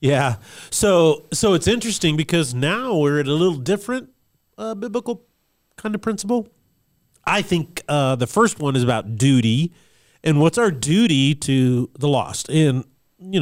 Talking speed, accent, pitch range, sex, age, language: 155 wpm, American, 125-175 Hz, male, 40-59, English